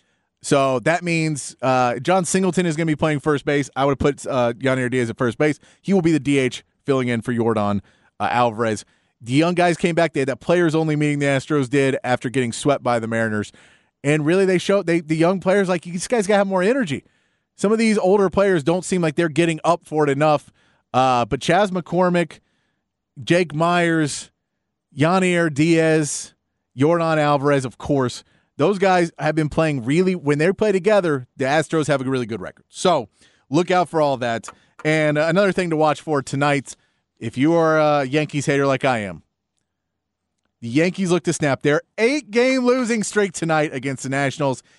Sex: male